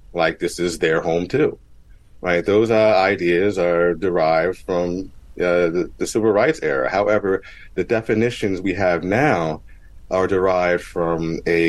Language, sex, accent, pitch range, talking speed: English, male, American, 80-95 Hz, 150 wpm